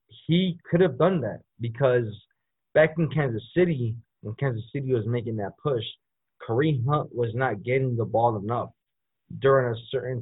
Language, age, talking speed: English, 20-39, 165 wpm